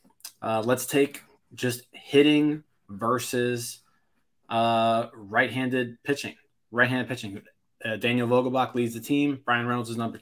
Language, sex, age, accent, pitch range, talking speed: English, male, 20-39, American, 110-135 Hz, 125 wpm